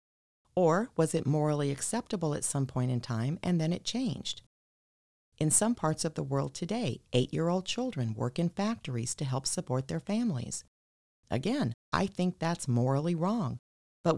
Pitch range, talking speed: 130-190 Hz, 160 wpm